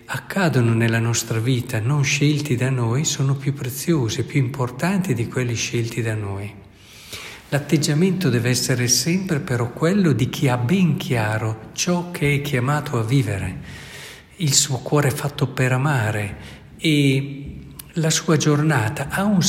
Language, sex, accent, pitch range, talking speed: Italian, male, native, 125-165 Hz, 145 wpm